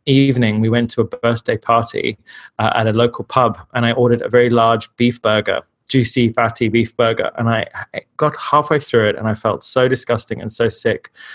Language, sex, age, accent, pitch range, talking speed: English, male, 20-39, British, 115-130 Hz, 200 wpm